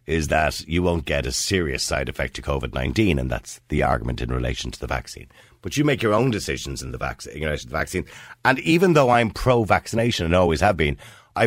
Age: 60-79